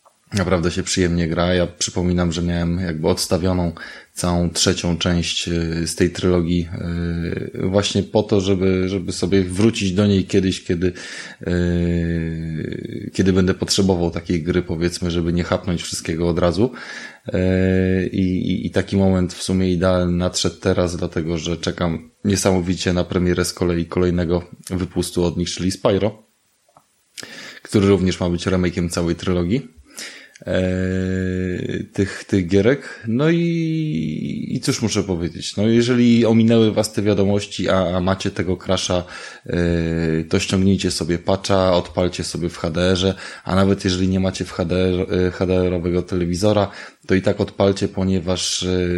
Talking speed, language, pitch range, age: 135 wpm, Polish, 90-100 Hz, 20-39